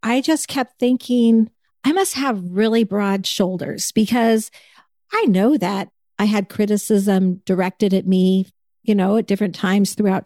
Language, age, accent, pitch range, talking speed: English, 50-69, American, 190-235 Hz, 150 wpm